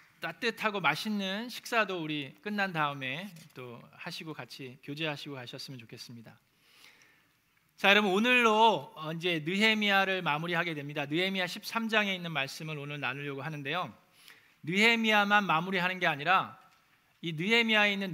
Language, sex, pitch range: Korean, male, 160-215 Hz